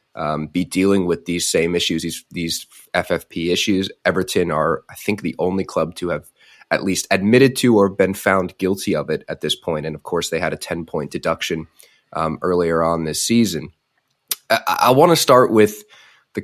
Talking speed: 195 wpm